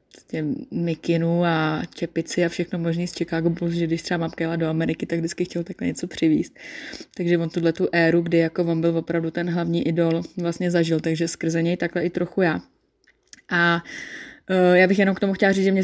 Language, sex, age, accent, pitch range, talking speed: Czech, female, 20-39, native, 170-185 Hz, 205 wpm